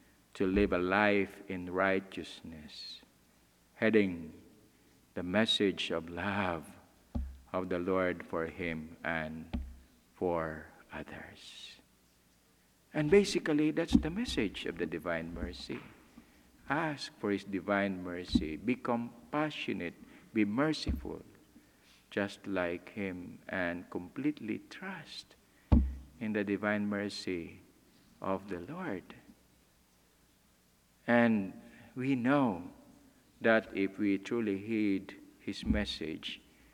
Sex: male